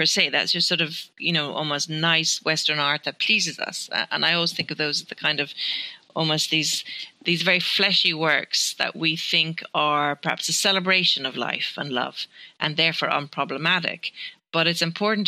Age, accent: 30-49, Irish